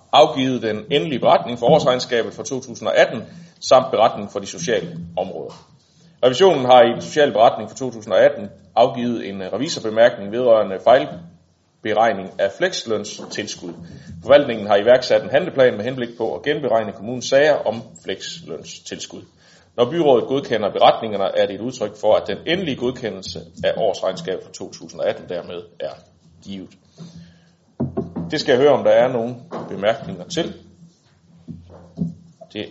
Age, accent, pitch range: 30-49, native, 90-145 Hz